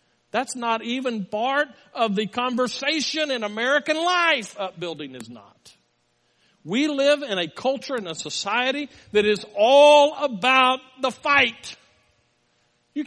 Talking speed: 130 wpm